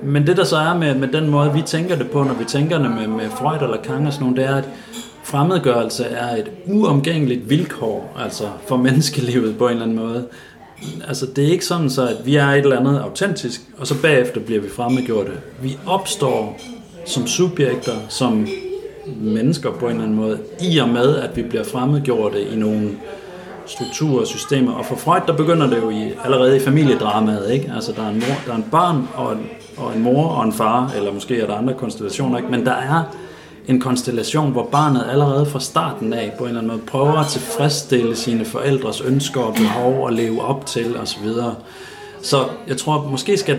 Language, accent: Danish, native